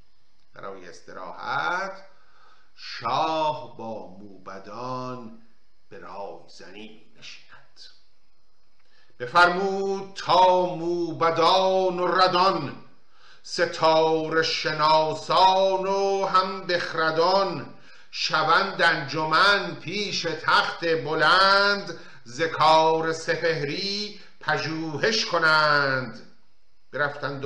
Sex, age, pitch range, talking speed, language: male, 50-69, 130-180 Hz, 65 wpm, Persian